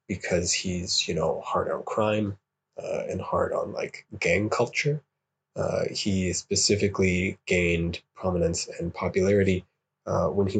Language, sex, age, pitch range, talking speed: English, male, 20-39, 90-110 Hz, 135 wpm